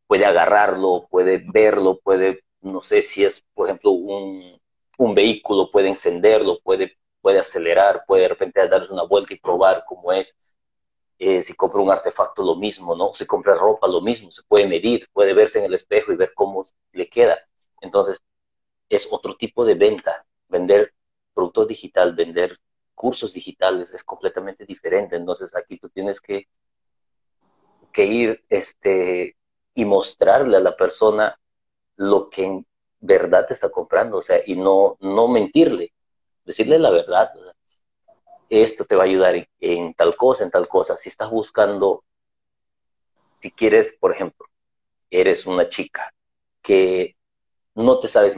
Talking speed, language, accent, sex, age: 155 wpm, Spanish, Mexican, male, 40-59